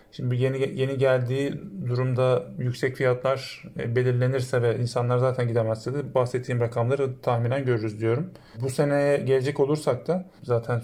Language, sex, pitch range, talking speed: Turkish, male, 125-140 Hz, 135 wpm